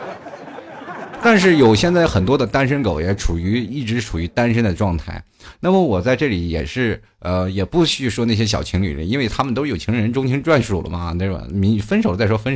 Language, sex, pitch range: Chinese, male, 95-130 Hz